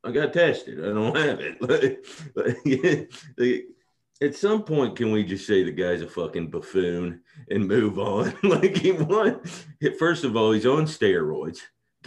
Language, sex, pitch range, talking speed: English, male, 100-140 Hz, 155 wpm